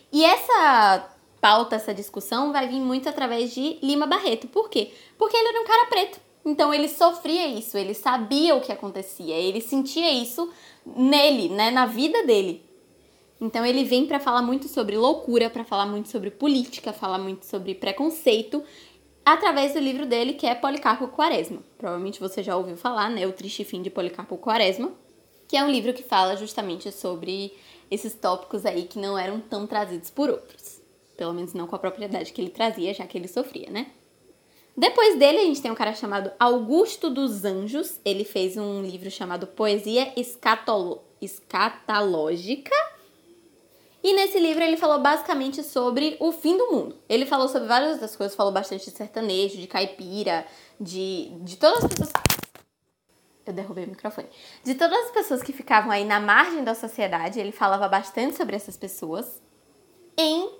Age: 10-29